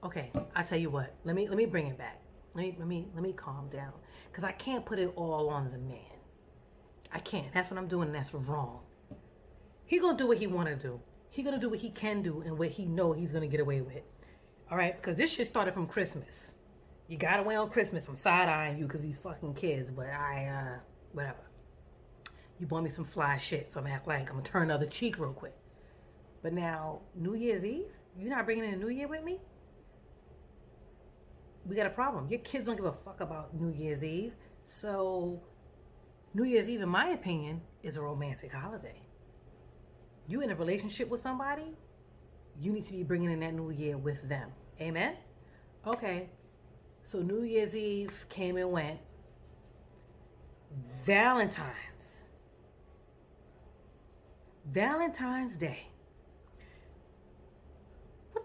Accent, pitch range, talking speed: American, 140-205 Hz, 175 wpm